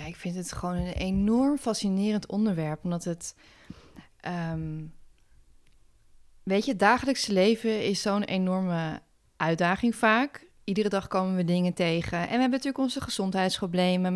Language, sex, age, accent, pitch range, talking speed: Dutch, female, 20-39, Dutch, 180-220 Hz, 145 wpm